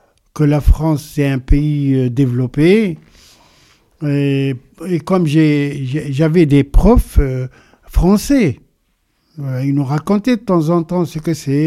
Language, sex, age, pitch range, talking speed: French, male, 60-79, 135-165 Hz, 135 wpm